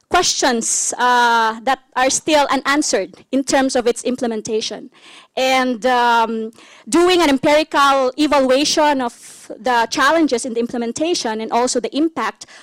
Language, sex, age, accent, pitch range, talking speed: English, female, 20-39, Filipino, 245-310 Hz, 130 wpm